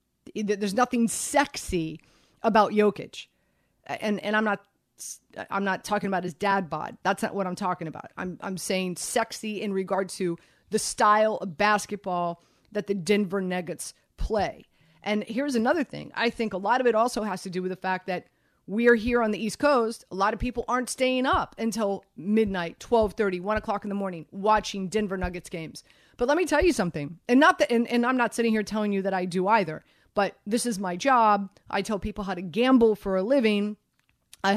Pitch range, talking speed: 190-250 Hz, 205 wpm